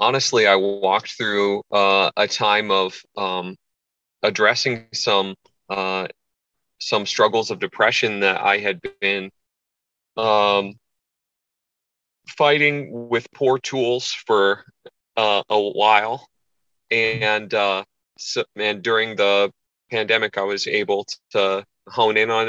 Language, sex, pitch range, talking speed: English, male, 95-110 Hz, 110 wpm